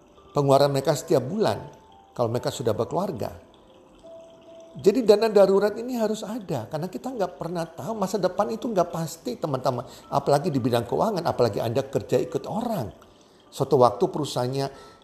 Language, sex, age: Indonesian, male, 50-69